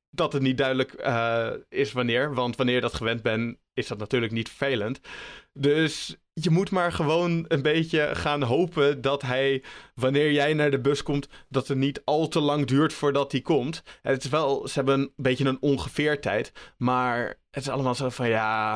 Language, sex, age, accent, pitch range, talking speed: Dutch, male, 20-39, Dutch, 115-140 Hz, 200 wpm